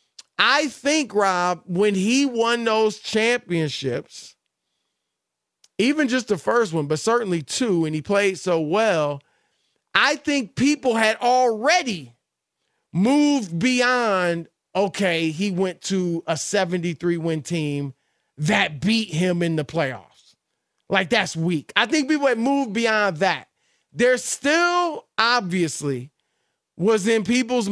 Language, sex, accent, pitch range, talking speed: English, male, American, 180-255 Hz, 125 wpm